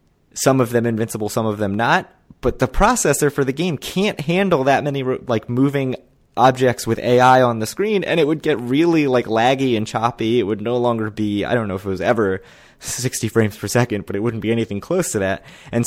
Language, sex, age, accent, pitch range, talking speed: English, male, 20-39, American, 100-125 Hz, 225 wpm